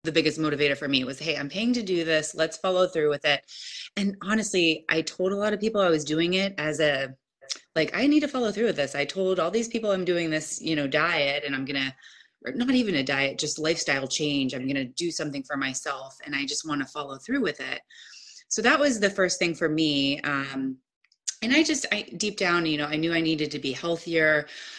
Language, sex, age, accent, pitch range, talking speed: English, female, 20-39, American, 145-195 Hz, 245 wpm